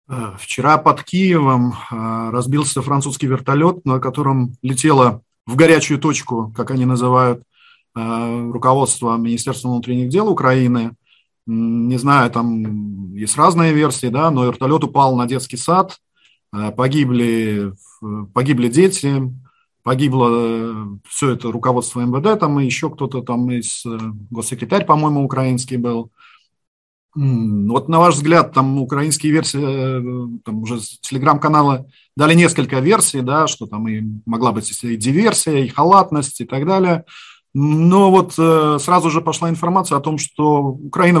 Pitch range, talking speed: 125-160 Hz, 130 wpm